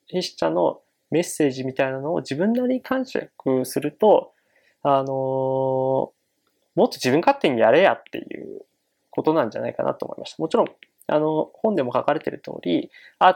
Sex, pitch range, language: male, 135-180 Hz, Japanese